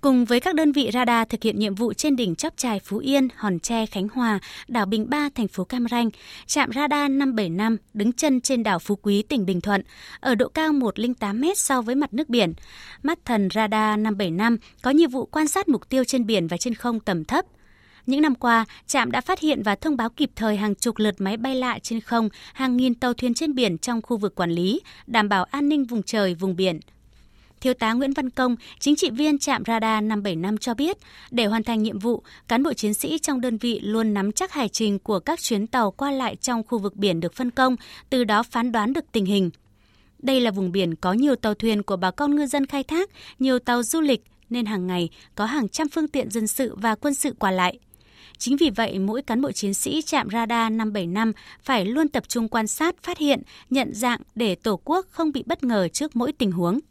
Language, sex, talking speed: Vietnamese, female, 235 wpm